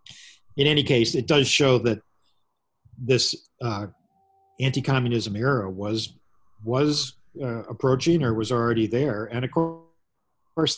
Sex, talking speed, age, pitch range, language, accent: male, 120 wpm, 50-69, 100-125 Hz, English, American